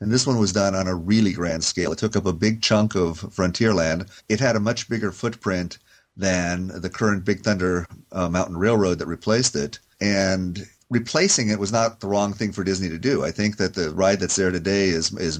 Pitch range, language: 90-105 Hz, English